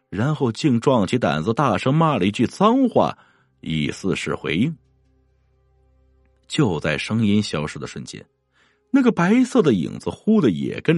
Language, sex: Chinese, male